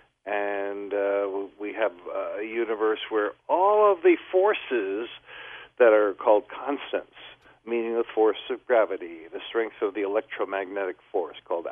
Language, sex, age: English, male, 50-69